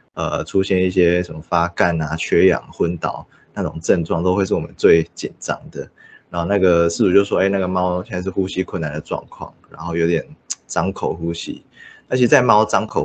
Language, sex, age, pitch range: Chinese, male, 20-39, 85-95 Hz